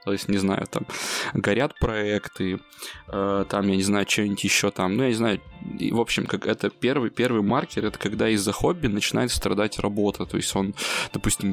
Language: Russian